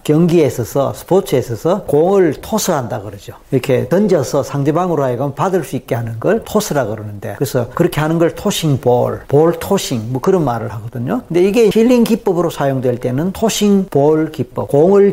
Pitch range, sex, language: 130-185 Hz, male, Korean